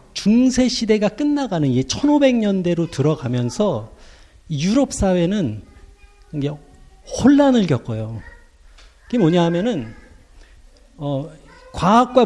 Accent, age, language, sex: native, 40-59, Korean, male